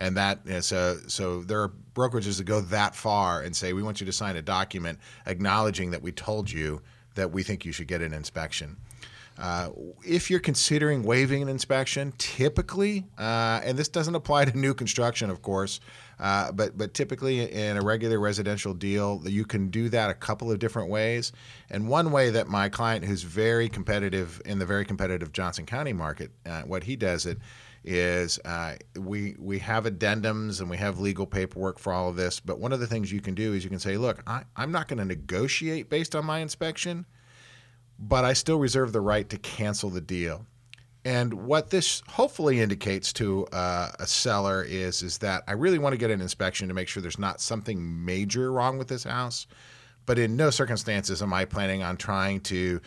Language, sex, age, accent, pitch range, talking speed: English, male, 40-59, American, 95-120 Hz, 200 wpm